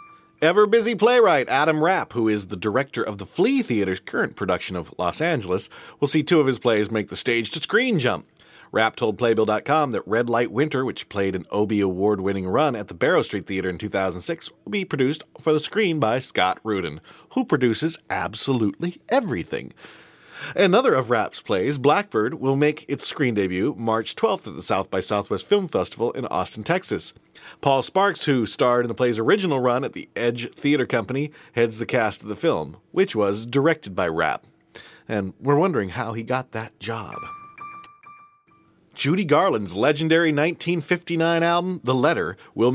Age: 40-59